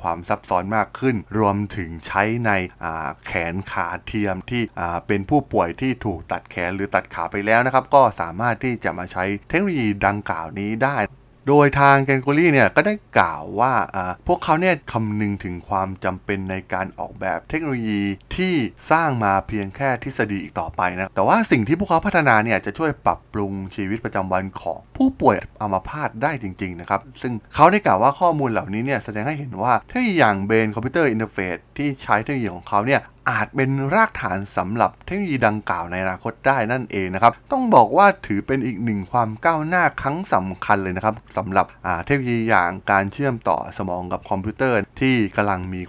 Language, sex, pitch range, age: Thai, male, 95-135 Hz, 20-39